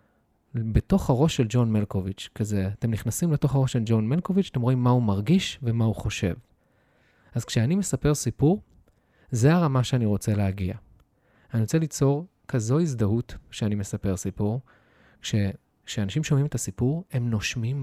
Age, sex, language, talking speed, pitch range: 20-39, male, Hebrew, 150 wpm, 105-140 Hz